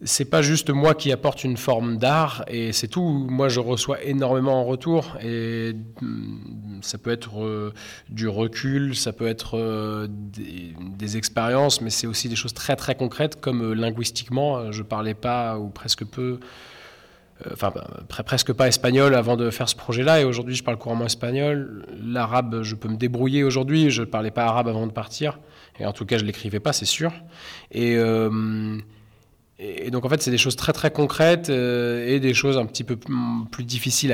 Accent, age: French, 20-39